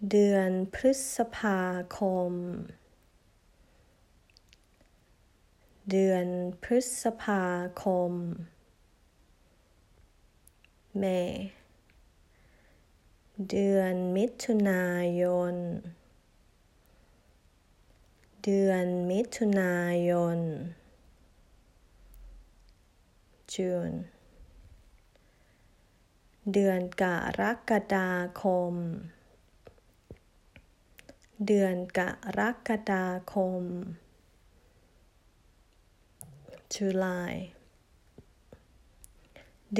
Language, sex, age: Thai, female, 20-39